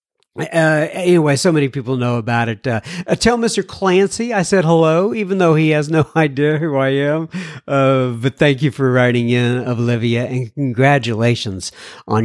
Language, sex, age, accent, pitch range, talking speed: English, male, 50-69, American, 130-190 Hz, 175 wpm